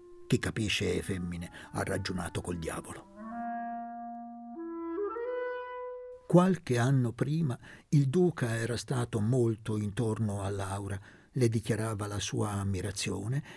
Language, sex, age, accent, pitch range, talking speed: Italian, male, 50-69, native, 105-160 Hz, 105 wpm